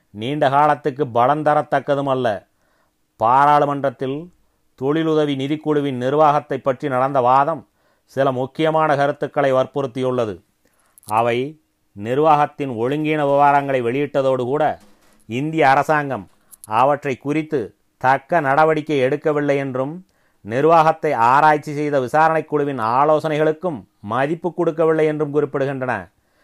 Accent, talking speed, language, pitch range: native, 90 wpm, Tamil, 130-150 Hz